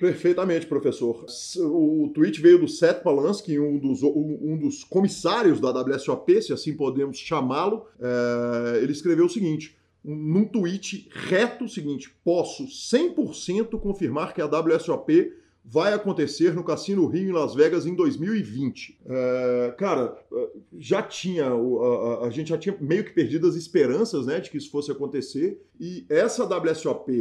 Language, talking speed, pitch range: Portuguese, 150 wpm, 145-210 Hz